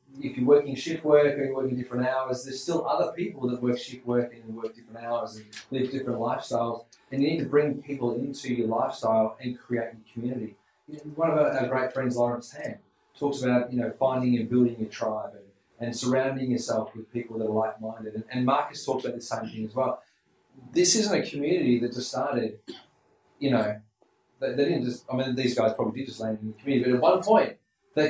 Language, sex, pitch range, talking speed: English, male, 115-130 Hz, 215 wpm